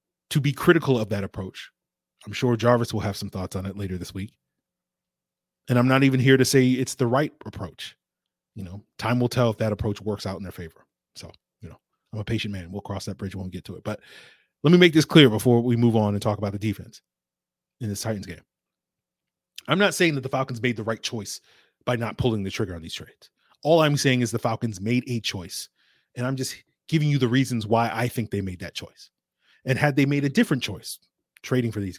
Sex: male